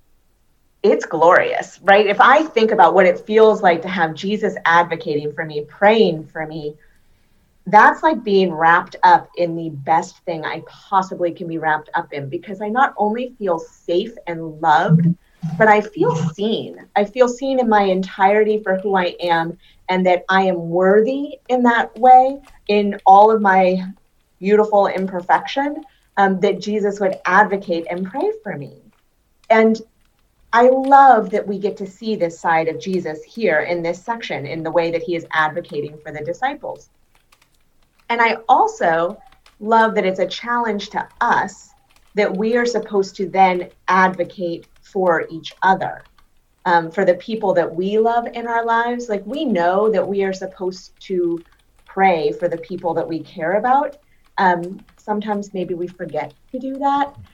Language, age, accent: English, 30-49, American